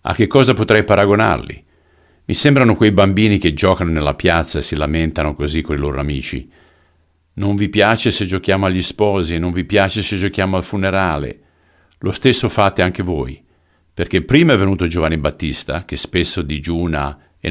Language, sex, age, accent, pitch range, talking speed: Italian, male, 50-69, native, 80-95 Hz, 170 wpm